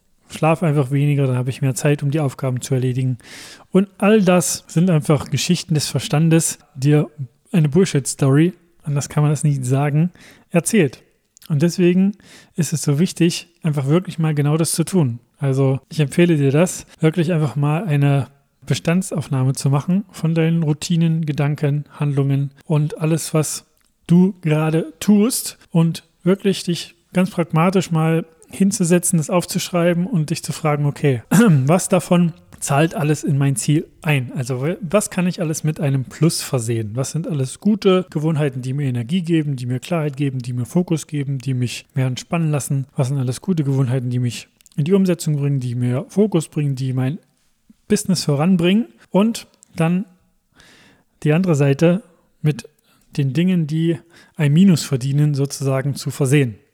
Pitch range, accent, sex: 140-175 Hz, German, male